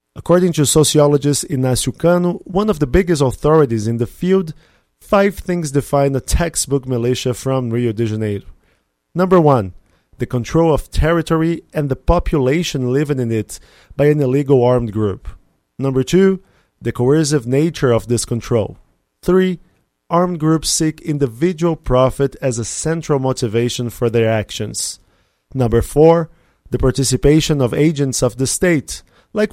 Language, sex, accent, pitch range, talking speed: English, male, Brazilian, 120-165 Hz, 145 wpm